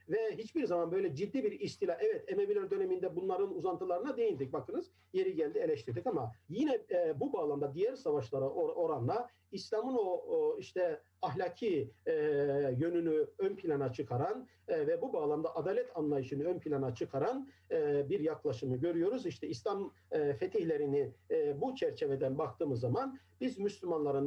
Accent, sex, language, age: native, male, Turkish, 50-69